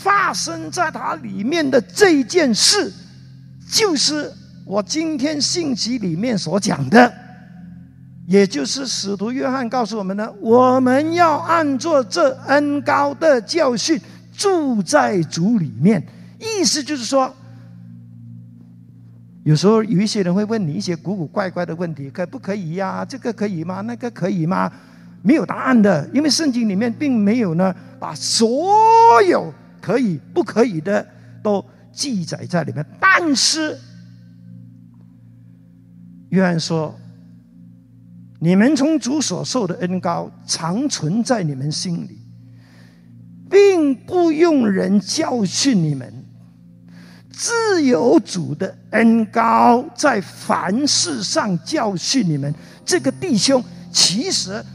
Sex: male